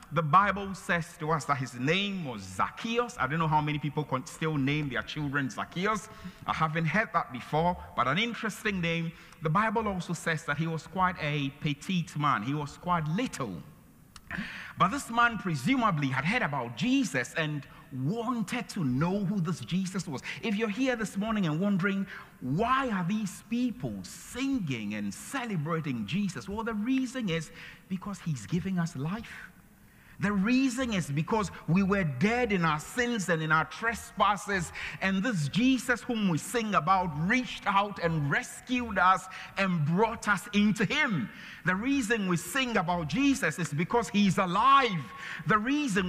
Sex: male